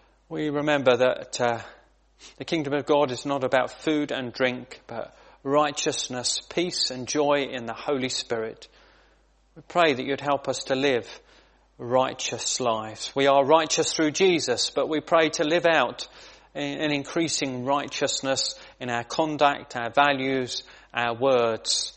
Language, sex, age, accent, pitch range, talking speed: English, male, 30-49, British, 130-155 Hz, 150 wpm